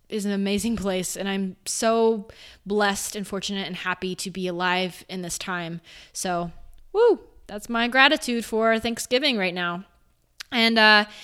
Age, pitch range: 20-39, 195-265 Hz